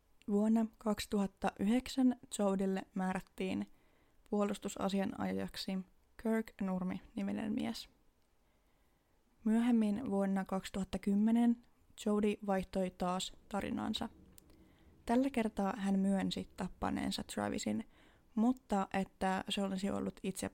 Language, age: Finnish, 20-39